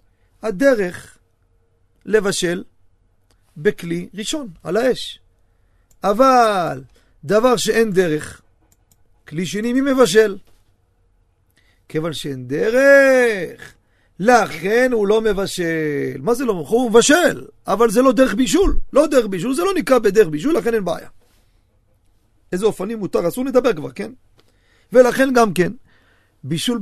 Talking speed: 120 wpm